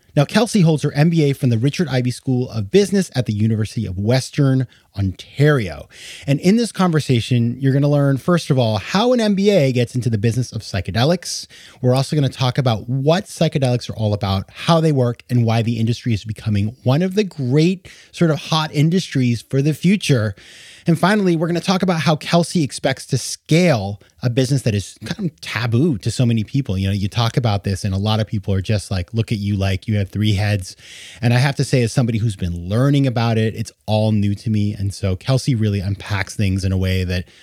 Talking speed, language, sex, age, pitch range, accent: 225 wpm, English, male, 30-49, 105-145 Hz, American